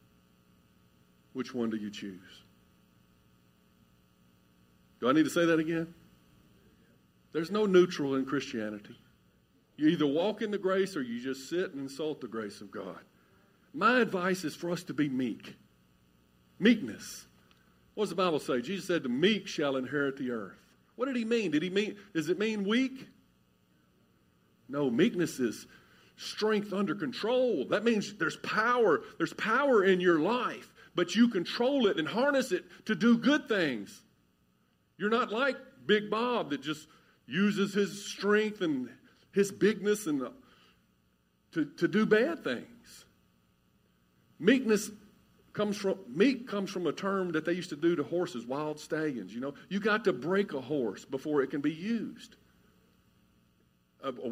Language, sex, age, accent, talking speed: English, male, 50-69, American, 160 wpm